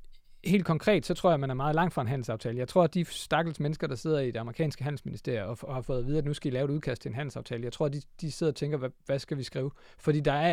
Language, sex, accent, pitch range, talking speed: Danish, male, native, 130-160 Hz, 330 wpm